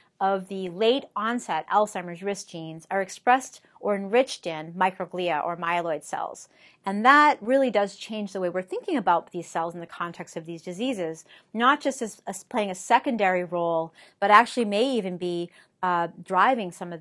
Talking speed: 175 wpm